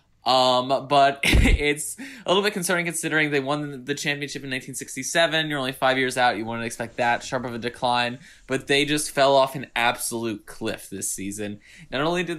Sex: male